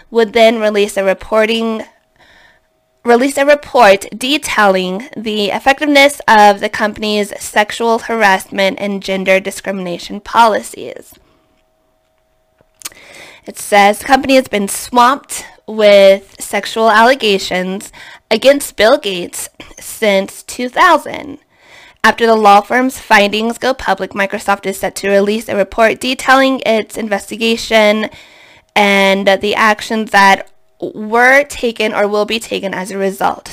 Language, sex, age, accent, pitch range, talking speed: English, female, 20-39, American, 200-235 Hz, 115 wpm